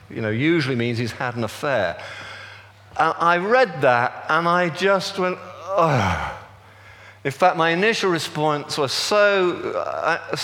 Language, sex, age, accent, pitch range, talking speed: English, male, 50-69, British, 120-180 Hz, 140 wpm